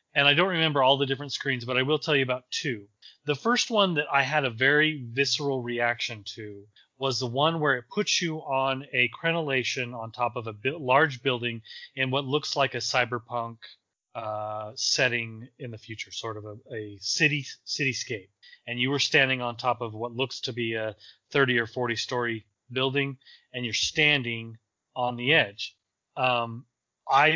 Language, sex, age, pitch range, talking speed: English, male, 30-49, 115-150 Hz, 185 wpm